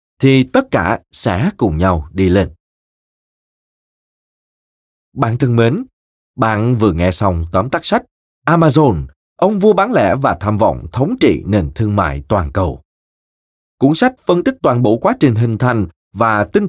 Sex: male